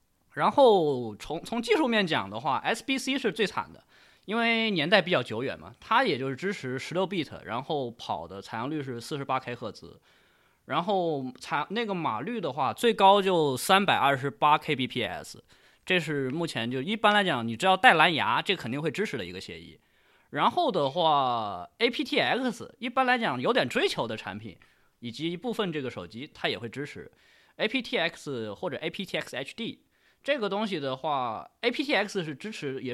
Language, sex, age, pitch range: Chinese, male, 20-39, 135-205 Hz